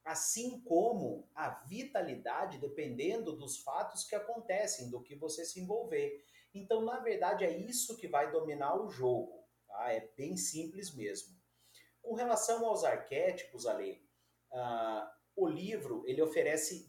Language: Portuguese